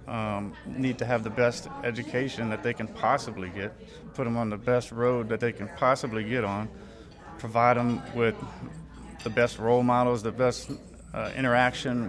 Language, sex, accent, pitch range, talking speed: English, male, American, 110-130 Hz, 175 wpm